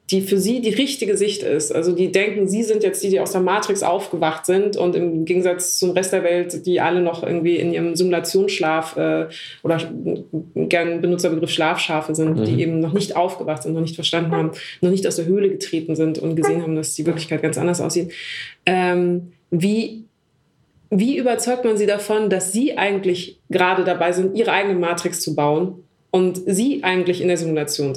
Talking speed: 195 wpm